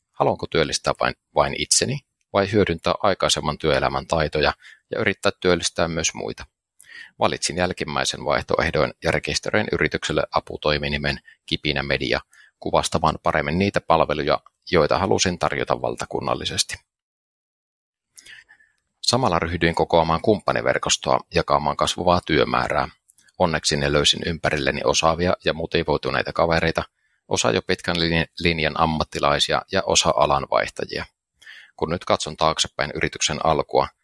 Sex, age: male, 30-49